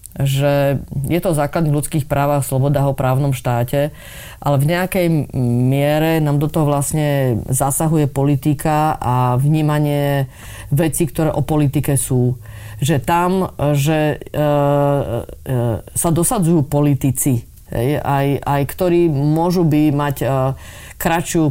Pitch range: 135-160 Hz